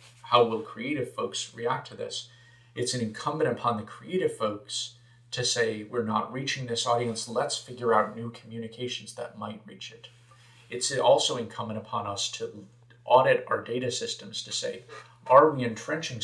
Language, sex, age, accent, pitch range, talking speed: English, male, 40-59, American, 115-125 Hz, 165 wpm